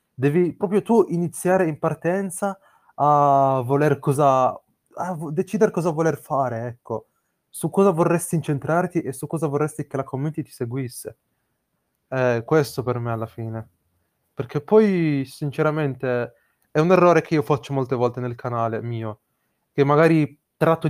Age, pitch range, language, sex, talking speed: 20-39, 125-160 Hz, Italian, male, 145 wpm